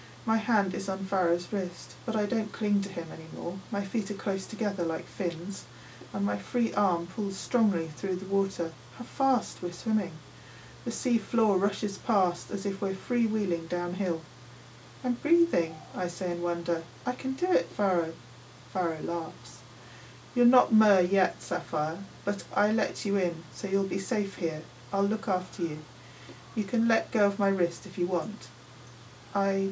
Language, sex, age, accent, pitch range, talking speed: English, female, 30-49, British, 170-205 Hz, 175 wpm